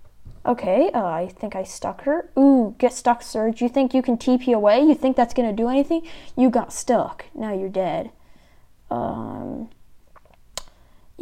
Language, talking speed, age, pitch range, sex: English, 165 wpm, 10-29, 205-265 Hz, female